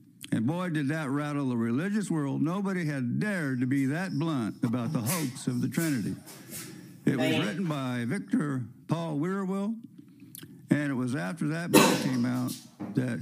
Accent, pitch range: American, 135-175 Hz